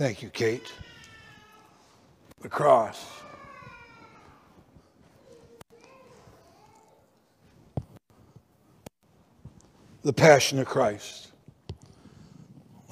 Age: 60-79